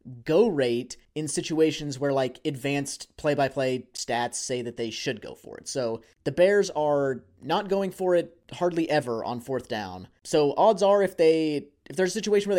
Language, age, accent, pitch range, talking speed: English, 30-49, American, 140-200 Hz, 185 wpm